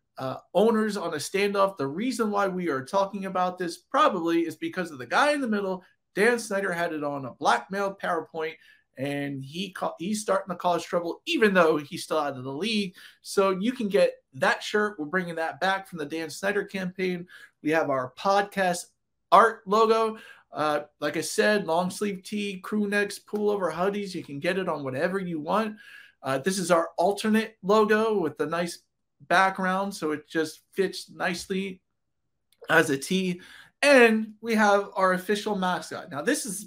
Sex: male